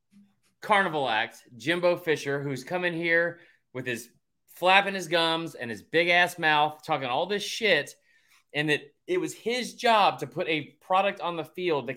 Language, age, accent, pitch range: English, 30-49, American, 140-195 Hz